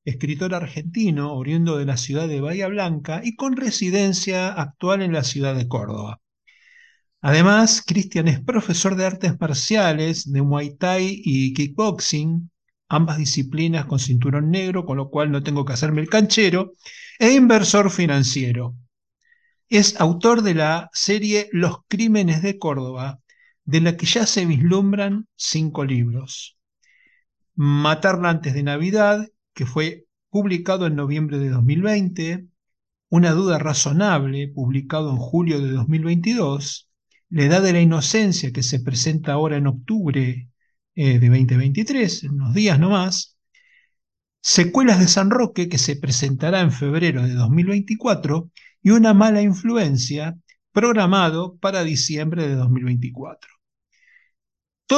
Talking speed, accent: 130 wpm, Argentinian